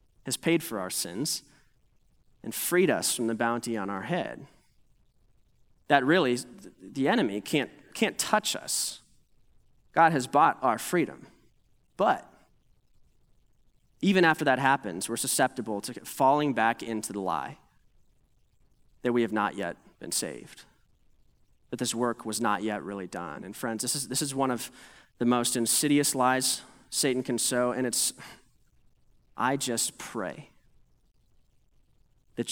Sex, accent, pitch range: male, American, 115-135 Hz